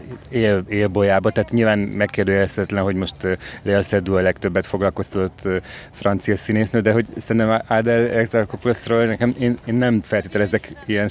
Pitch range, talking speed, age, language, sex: 100-115 Hz, 140 wpm, 30-49, Hungarian, male